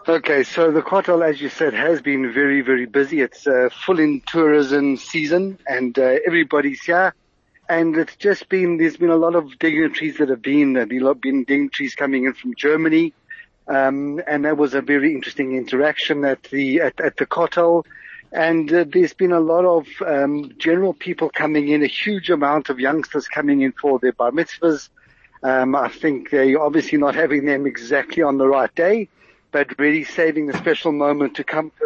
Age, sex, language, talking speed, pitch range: 60-79, male, English, 190 wpm, 140-170 Hz